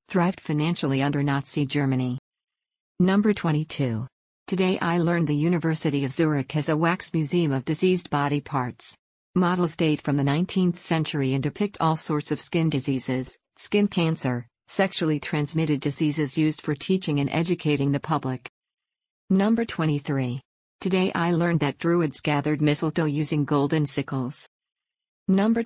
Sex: female